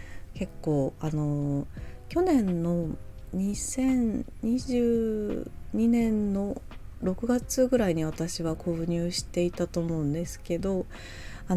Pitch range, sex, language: 145-190 Hz, female, Japanese